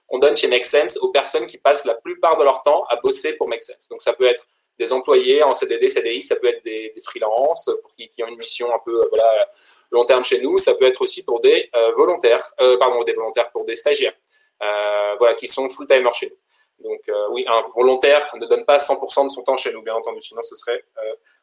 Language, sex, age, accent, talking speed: French, male, 20-39, French, 245 wpm